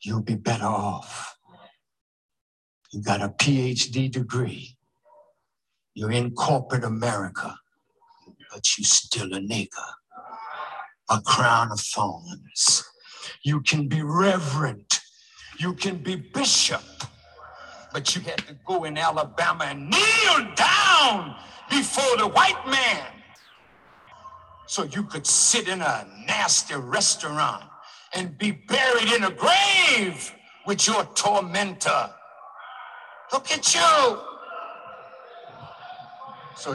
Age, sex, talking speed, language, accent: 60-79, male, 105 wpm, French, American